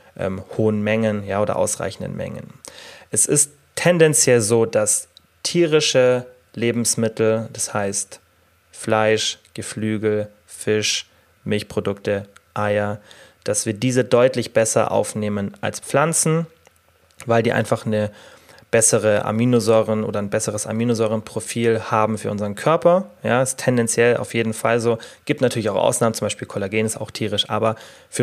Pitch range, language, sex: 110-125 Hz, German, male